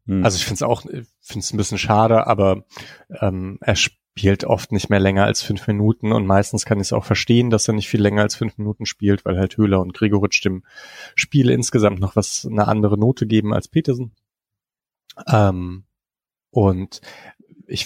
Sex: male